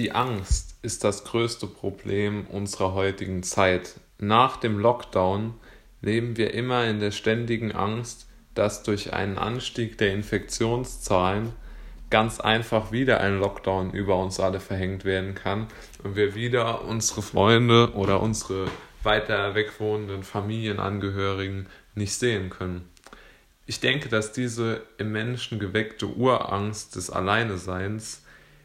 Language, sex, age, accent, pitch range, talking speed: German, male, 20-39, German, 100-120 Hz, 125 wpm